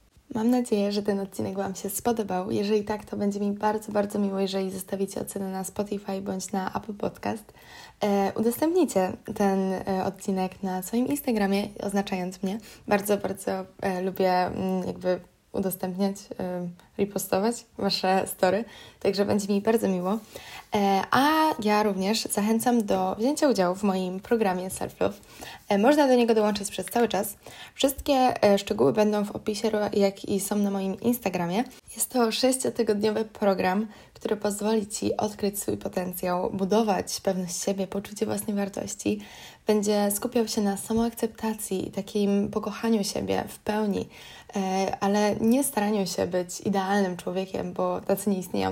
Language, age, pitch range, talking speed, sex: Polish, 20-39, 195-220 Hz, 140 wpm, female